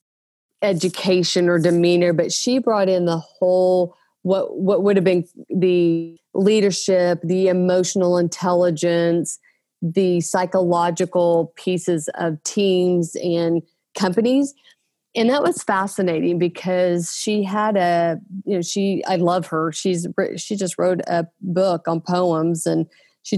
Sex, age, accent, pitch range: female, 30-49, American, 170-195 Hz